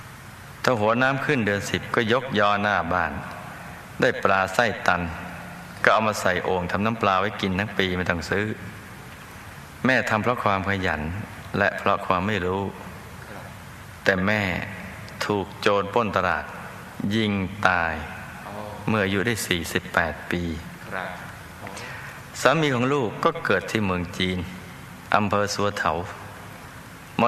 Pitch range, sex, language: 90-110 Hz, male, Thai